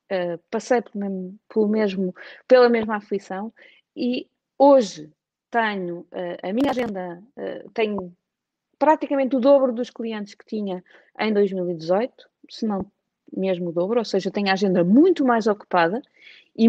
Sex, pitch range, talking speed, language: female, 195-275 Hz, 120 wpm, Portuguese